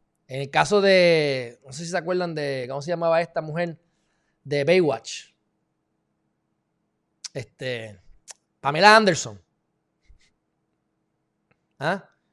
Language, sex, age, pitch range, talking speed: Spanish, male, 20-39, 140-195 Hz, 100 wpm